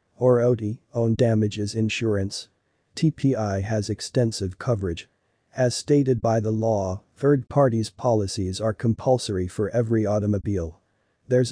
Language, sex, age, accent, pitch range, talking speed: English, male, 40-59, American, 105-125 Hz, 120 wpm